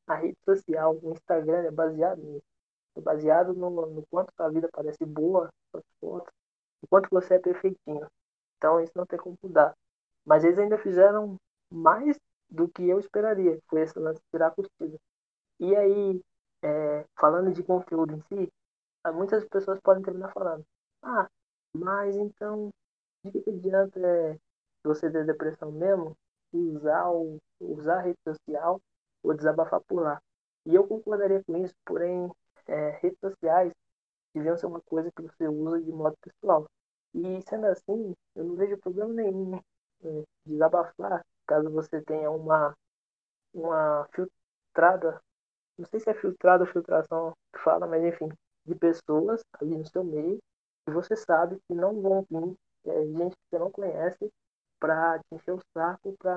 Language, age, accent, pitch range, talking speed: Portuguese, 20-39, Brazilian, 160-190 Hz, 155 wpm